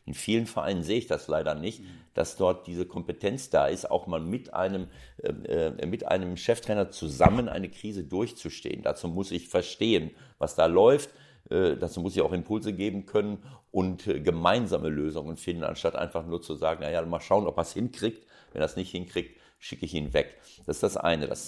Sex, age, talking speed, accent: male, 50-69, 195 wpm, German